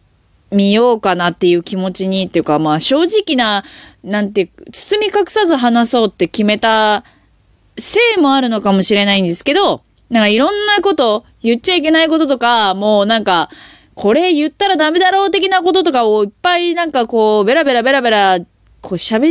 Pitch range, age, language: 200-310 Hz, 20-39, Japanese